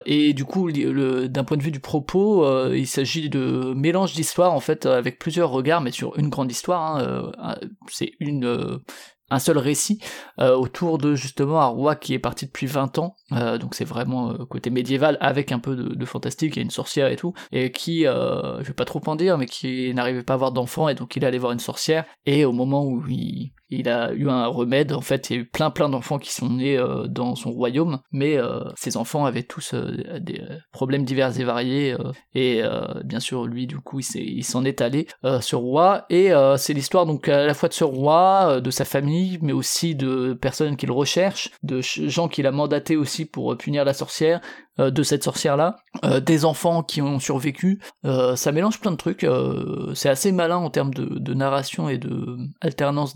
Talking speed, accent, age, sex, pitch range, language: 230 wpm, French, 20-39, male, 130-160 Hz, French